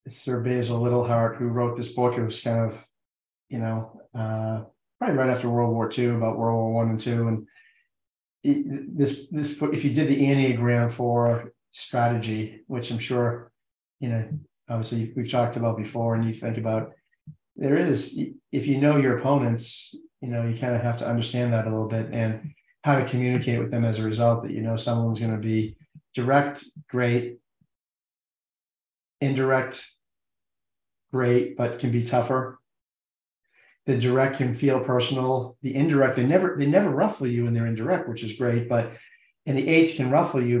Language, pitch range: English, 115-140 Hz